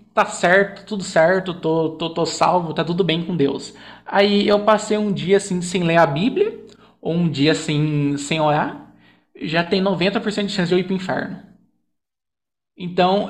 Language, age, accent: Portuguese, 20-39, Brazilian